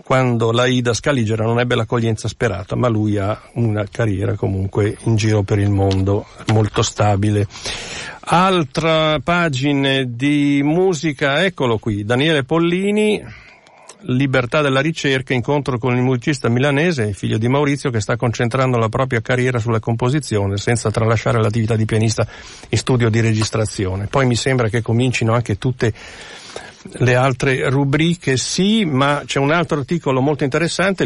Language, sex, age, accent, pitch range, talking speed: Italian, male, 50-69, native, 110-140 Hz, 145 wpm